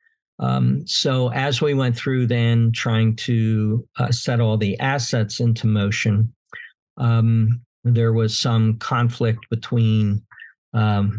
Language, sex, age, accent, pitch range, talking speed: English, male, 50-69, American, 110-125 Hz, 125 wpm